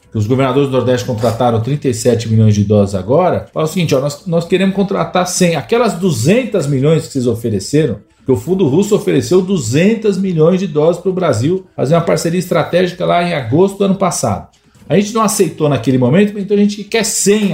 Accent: Brazilian